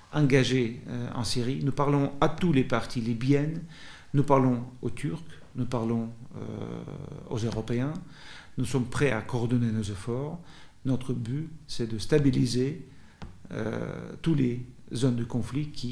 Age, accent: 50-69, French